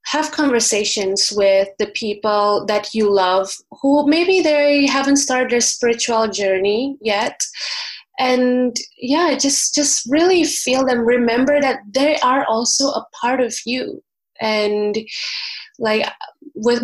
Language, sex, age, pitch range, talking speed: English, female, 20-39, 210-250 Hz, 130 wpm